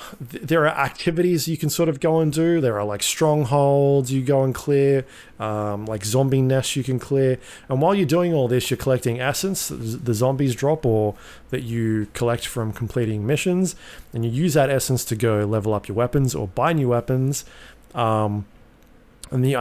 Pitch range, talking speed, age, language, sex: 110-135 Hz, 190 wpm, 20-39, English, male